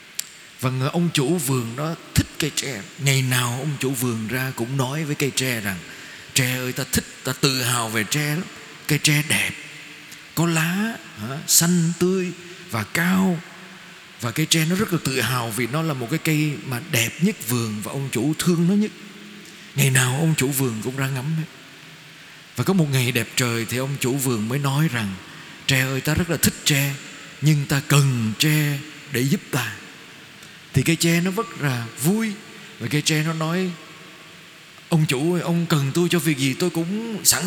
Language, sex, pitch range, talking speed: Vietnamese, male, 130-165 Hz, 200 wpm